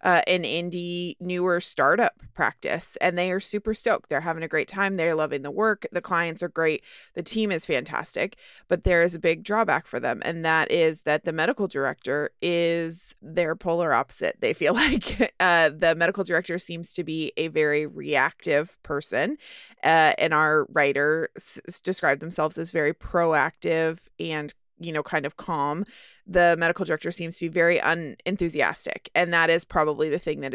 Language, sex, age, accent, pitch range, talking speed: English, female, 20-39, American, 155-180 Hz, 180 wpm